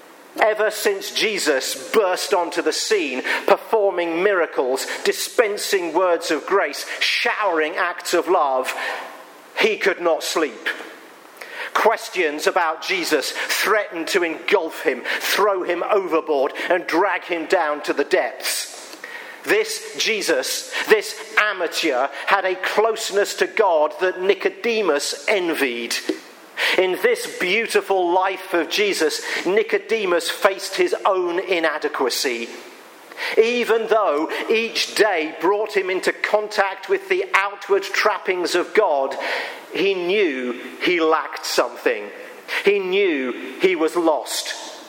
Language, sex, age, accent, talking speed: English, male, 50-69, British, 115 wpm